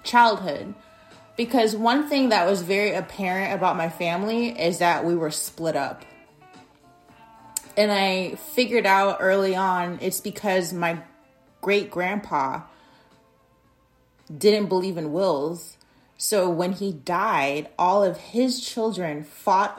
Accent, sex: American, female